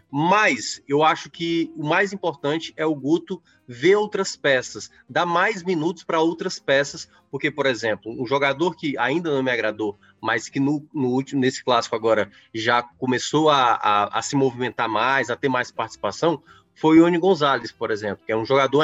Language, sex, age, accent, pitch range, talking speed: Portuguese, male, 20-39, Brazilian, 130-165 Hz, 175 wpm